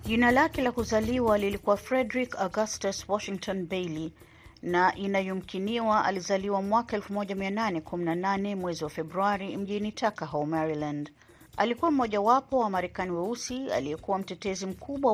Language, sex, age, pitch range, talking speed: Swahili, female, 30-49, 175-225 Hz, 115 wpm